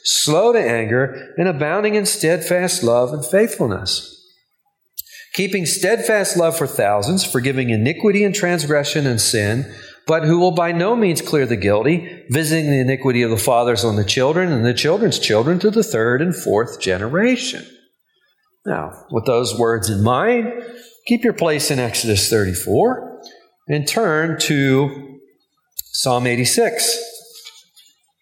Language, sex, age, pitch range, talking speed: English, male, 40-59, 120-180 Hz, 140 wpm